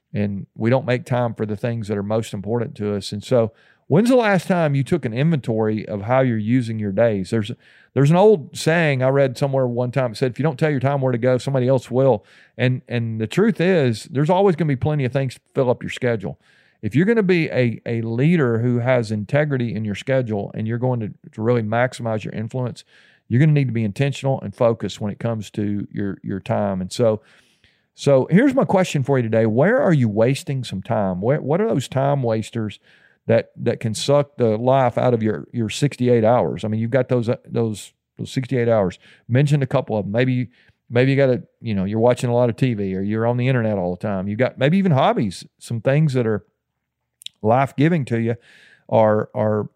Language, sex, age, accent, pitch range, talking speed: English, male, 40-59, American, 110-140 Hz, 235 wpm